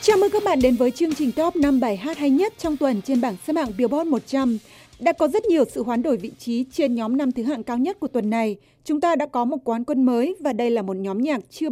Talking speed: 285 wpm